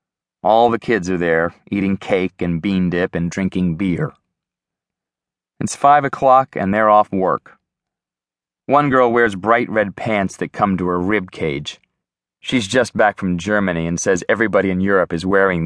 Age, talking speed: 30-49, 170 wpm